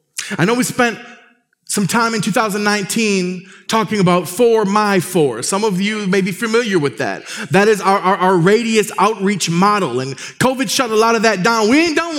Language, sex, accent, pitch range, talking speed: English, male, American, 160-220 Hz, 195 wpm